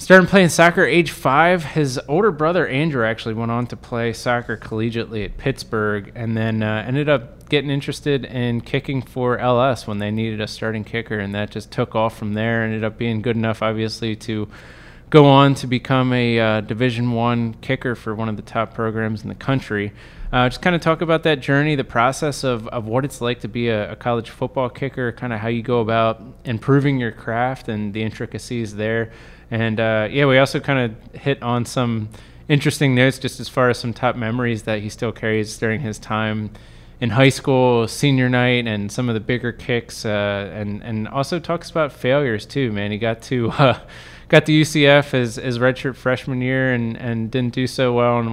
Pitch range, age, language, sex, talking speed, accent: 110-135 Hz, 20-39, English, male, 210 wpm, American